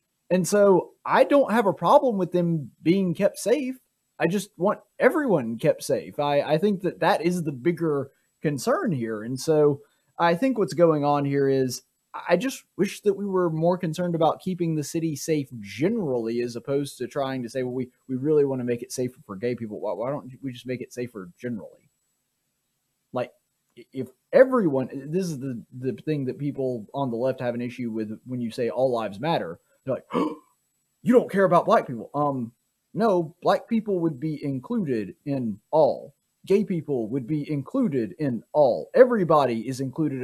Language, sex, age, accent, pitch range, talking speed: English, male, 20-39, American, 130-185 Hz, 190 wpm